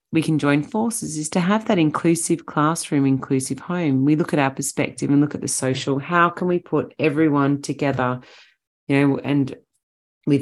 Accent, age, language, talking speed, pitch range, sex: Australian, 30-49, English, 185 wpm, 140-180 Hz, female